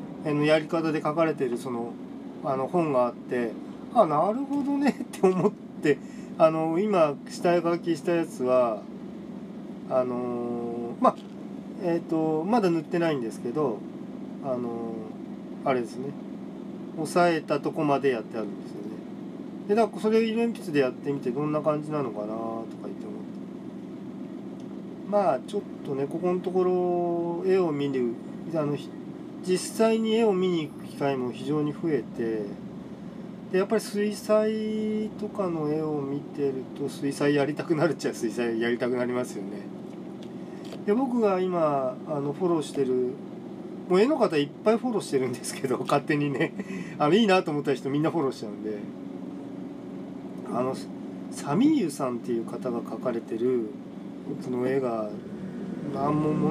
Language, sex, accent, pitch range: Japanese, male, native, 135-205 Hz